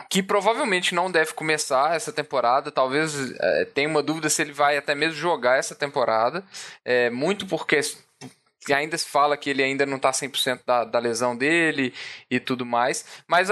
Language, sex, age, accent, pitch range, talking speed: Portuguese, male, 10-29, Brazilian, 125-170 Hz, 180 wpm